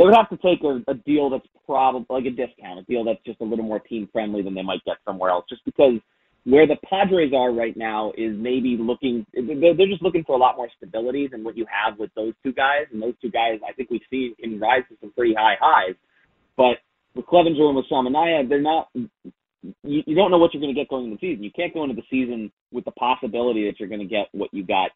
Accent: American